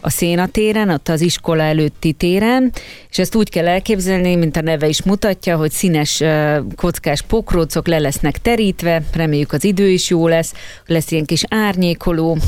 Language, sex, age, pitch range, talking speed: Hungarian, female, 30-49, 155-180 Hz, 165 wpm